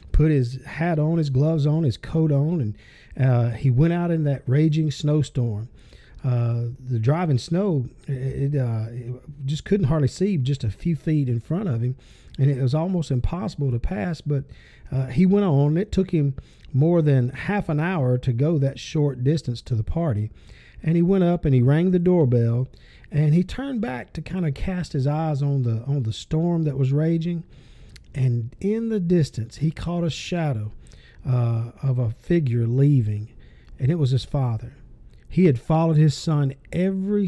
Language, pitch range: English, 125-170 Hz